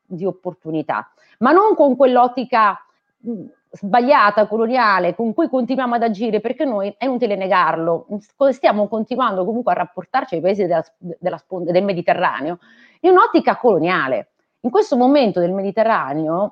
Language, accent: Italian, native